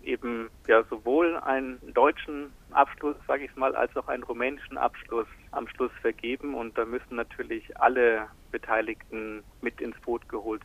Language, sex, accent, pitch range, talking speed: German, male, German, 115-125 Hz, 150 wpm